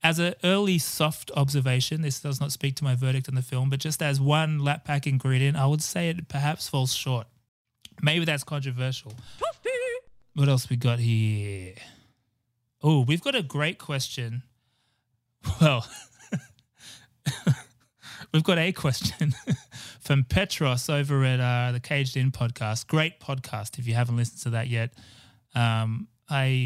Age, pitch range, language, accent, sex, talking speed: 20-39, 120-140 Hz, English, Australian, male, 155 wpm